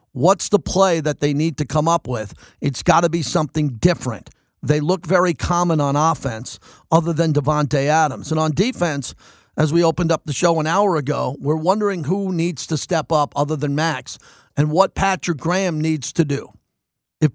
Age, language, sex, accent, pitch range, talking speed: 50-69, English, male, American, 145-190 Hz, 195 wpm